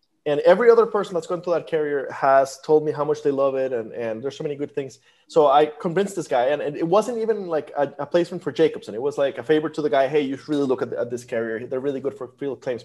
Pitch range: 140-180 Hz